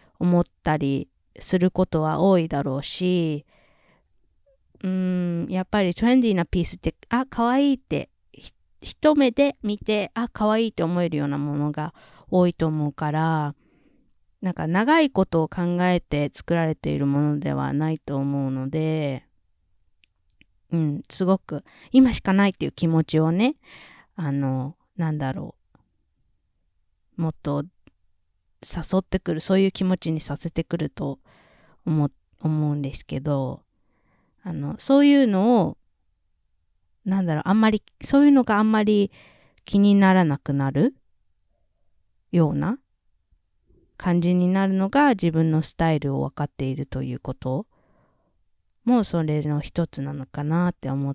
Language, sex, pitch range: Japanese, female, 140-195 Hz